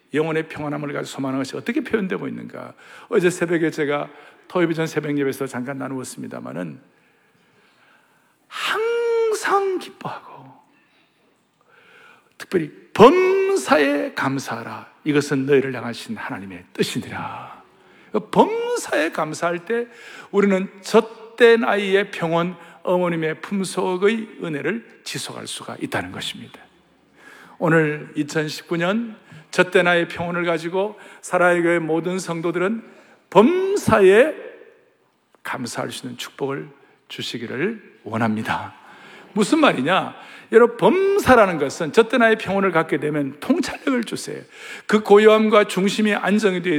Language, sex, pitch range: Korean, male, 155-230 Hz